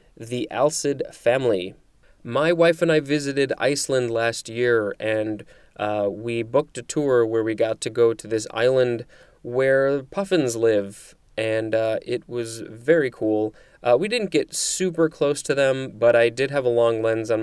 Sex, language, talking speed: male, English, 170 wpm